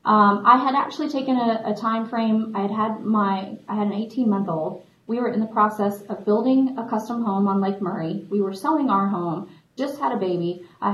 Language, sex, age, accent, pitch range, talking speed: English, female, 30-49, American, 190-220 Hz, 230 wpm